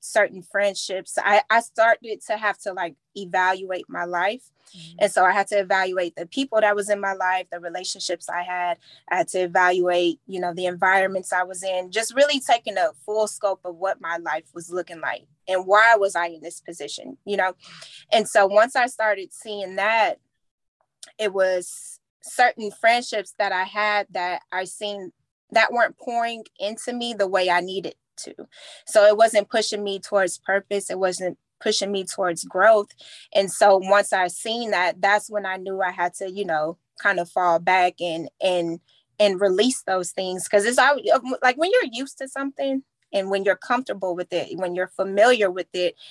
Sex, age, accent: female, 20-39, American